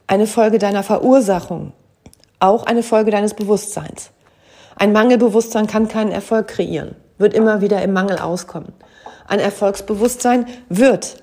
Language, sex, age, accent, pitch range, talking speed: German, female, 40-59, German, 185-220 Hz, 130 wpm